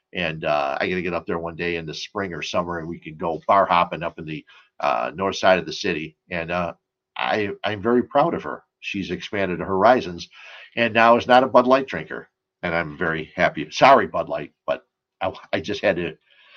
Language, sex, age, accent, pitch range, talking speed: English, male, 50-69, American, 105-155 Hz, 215 wpm